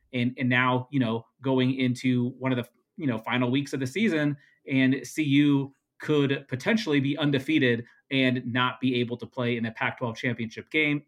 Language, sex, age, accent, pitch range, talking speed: English, male, 30-49, American, 120-140 Hz, 185 wpm